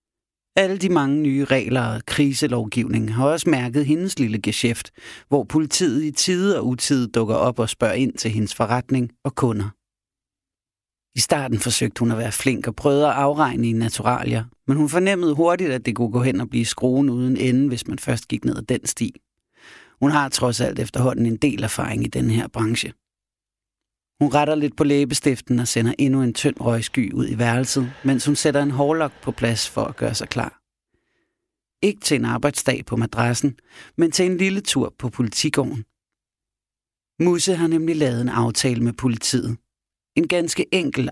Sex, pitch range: male, 115-145 Hz